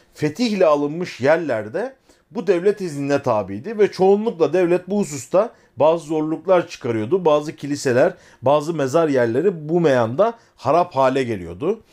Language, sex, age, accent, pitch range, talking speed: Turkish, male, 40-59, native, 135-195 Hz, 125 wpm